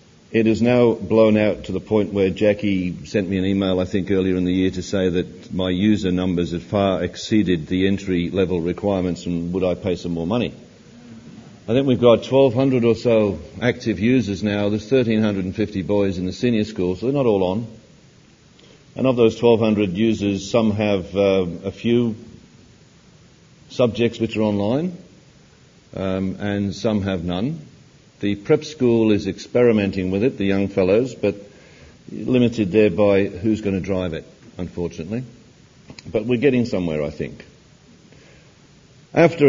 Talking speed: 165 wpm